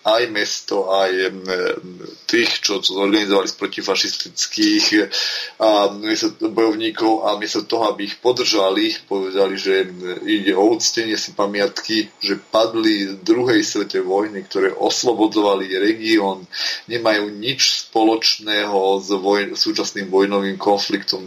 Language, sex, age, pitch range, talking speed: Slovak, male, 30-49, 95-125 Hz, 115 wpm